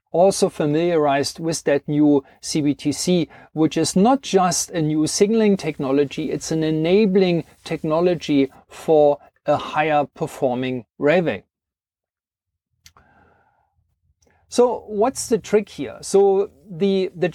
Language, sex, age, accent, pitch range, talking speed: English, male, 40-59, German, 150-200 Hz, 105 wpm